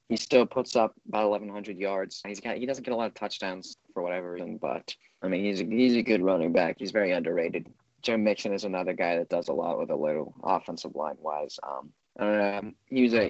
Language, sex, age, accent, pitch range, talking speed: English, male, 20-39, American, 95-110 Hz, 210 wpm